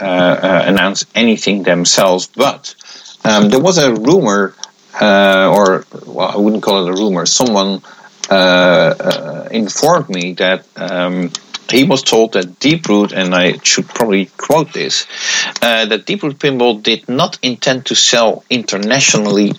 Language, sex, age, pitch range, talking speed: English, male, 50-69, 90-110 Hz, 155 wpm